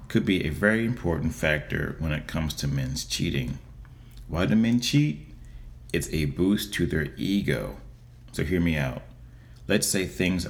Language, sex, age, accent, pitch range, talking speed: English, male, 40-59, American, 75-105 Hz, 165 wpm